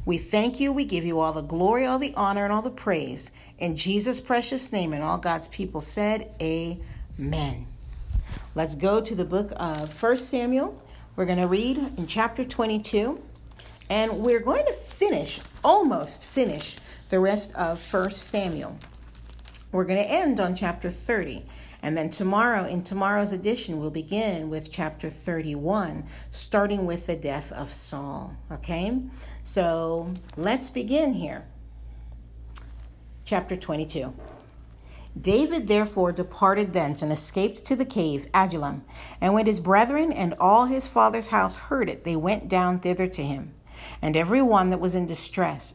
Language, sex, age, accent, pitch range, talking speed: English, female, 50-69, American, 155-215 Hz, 155 wpm